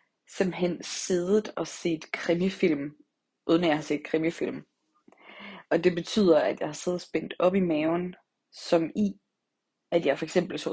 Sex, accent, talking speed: female, native, 155 wpm